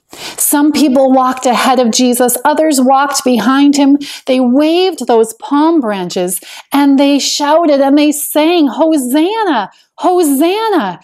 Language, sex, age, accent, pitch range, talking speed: English, female, 40-59, American, 210-300 Hz, 125 wpm